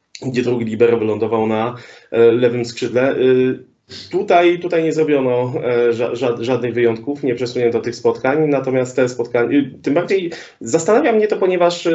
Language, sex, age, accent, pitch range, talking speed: Polish, male, 20-39, native, 125-160 Hz, 135 wpm